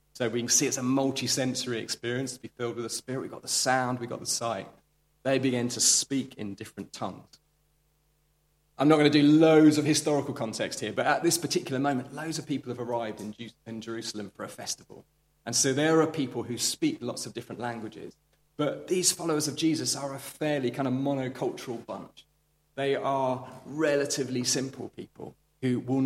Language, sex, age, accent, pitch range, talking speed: English, male, 30-49, British, 115-145 Hz, 195 wpm